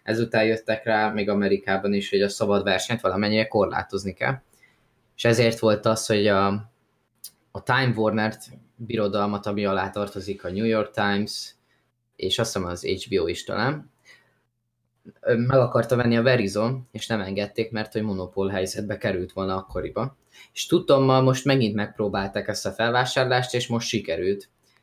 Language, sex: Hungarian, male